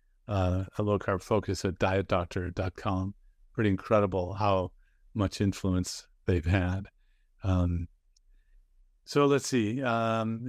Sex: male